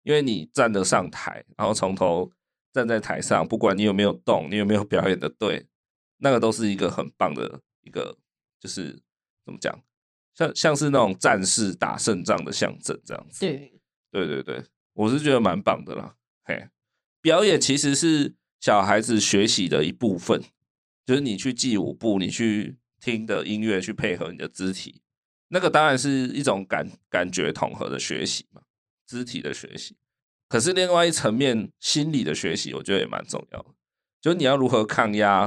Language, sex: Chinese, male